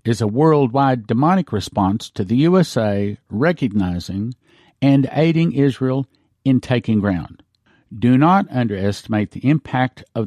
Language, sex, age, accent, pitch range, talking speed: English, male, 50-69, American, 110-145 Hz, 125 wpm